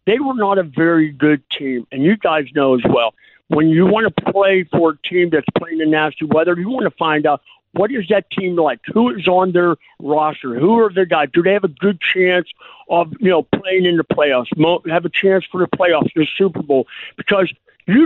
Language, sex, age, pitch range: English, male, 50-69, 160-185 Hz